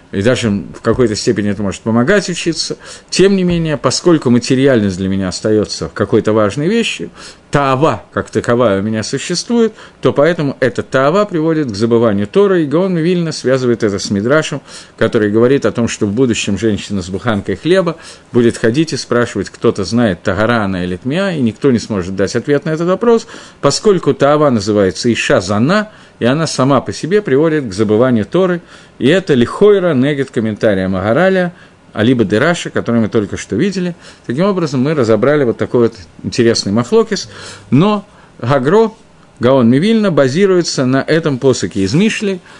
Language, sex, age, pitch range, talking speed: Russian, male, 50-69, 110-175 Hz, 165 wpm